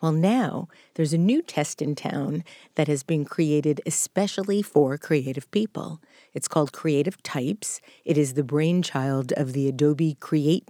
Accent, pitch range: American, 145-185 Hz